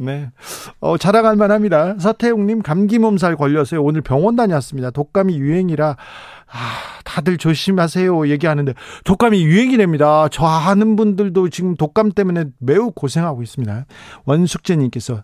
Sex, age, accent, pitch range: male, 40-59, native, 150-195 Hz